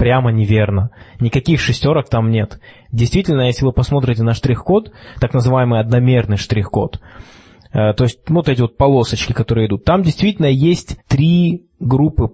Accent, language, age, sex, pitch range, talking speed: native, Russian, 20-39, male, 110-140 Hz, 140 wpm